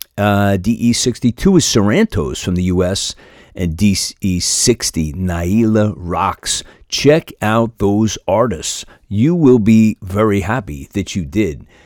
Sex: male